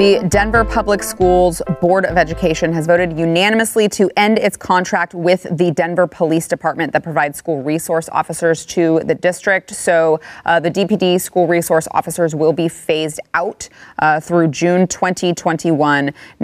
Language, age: English, 20-39